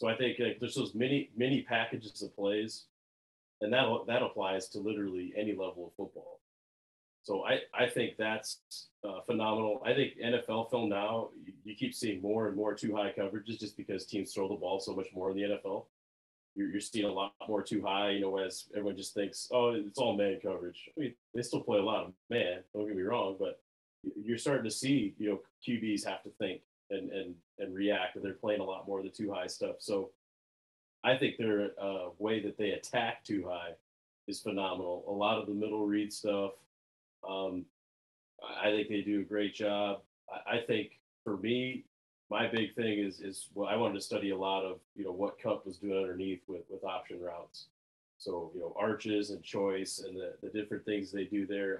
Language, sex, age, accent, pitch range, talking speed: English, male, 30-49, American, 95-110 Hz, 210 wpm